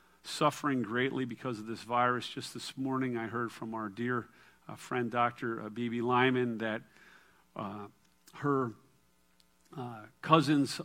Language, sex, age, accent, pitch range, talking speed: English, male, 50-69, American, 110-125 Hz, 135 wpm